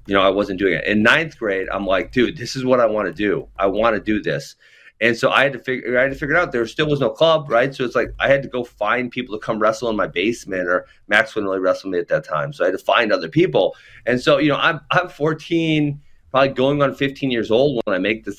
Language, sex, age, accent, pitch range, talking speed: English, male, 30-49, American, 115-145 Hz, 290 wpm